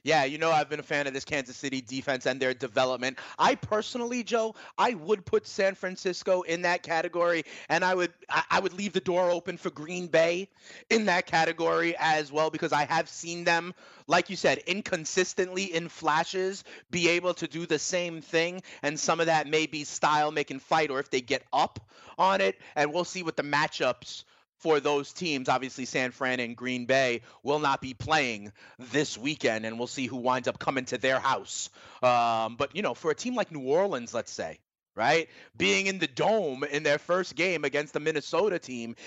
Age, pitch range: 30-49, 140-175 Hz